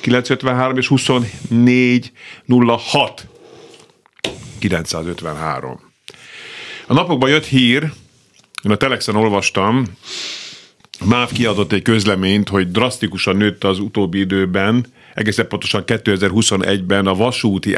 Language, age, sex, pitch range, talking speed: Hungarian, 50-69, male, 95-120 Hz, 90 wpm